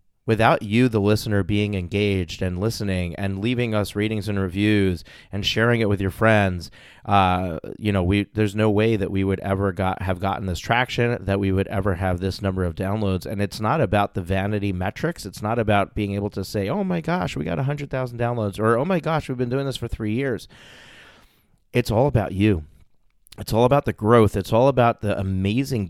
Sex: male